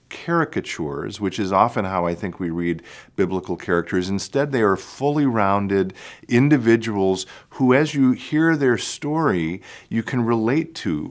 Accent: American